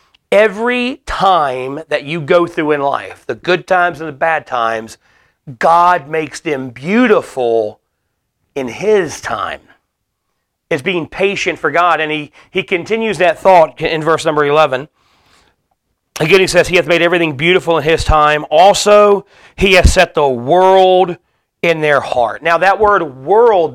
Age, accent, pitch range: 40-59, American, 150-195 Hz